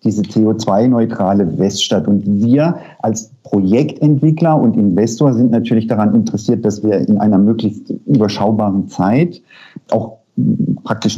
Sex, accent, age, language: male, German, 50-69, German